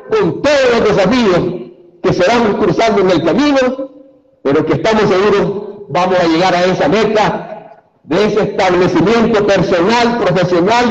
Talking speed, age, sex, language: 140 wpm, 50-69, male, Spanish